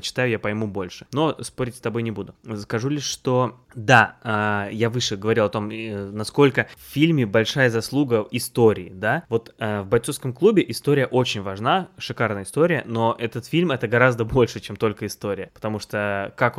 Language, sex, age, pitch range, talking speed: Russian, male, 20-39, 105-125 Hz, 170 wpm